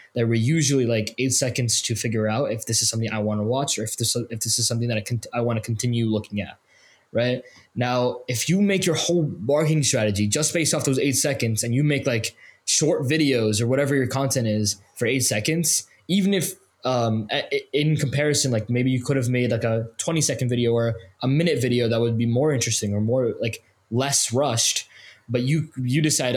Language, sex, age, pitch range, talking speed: English, male, 20-39, 115-140 Hz, 215 wpm